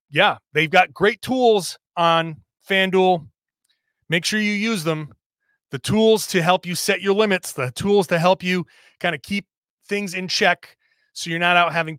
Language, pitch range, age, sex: English, 150-195 Hz, 30-49, male